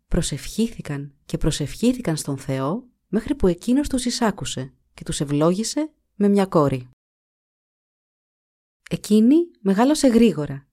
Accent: native